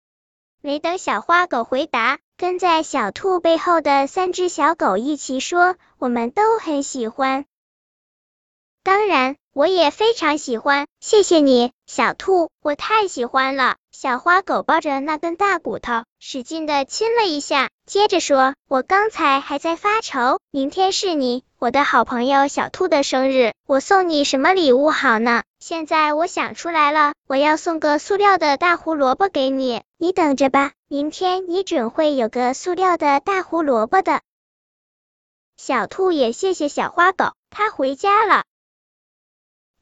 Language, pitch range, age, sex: Chinese, 265-360 Hz, 10-29, male